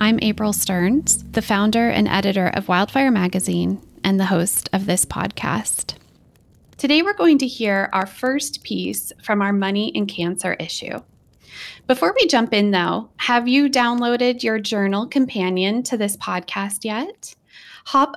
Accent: American